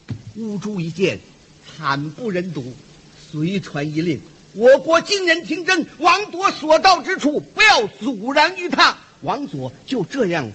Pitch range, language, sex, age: 220-355 Hz, Chinese, male, 50-69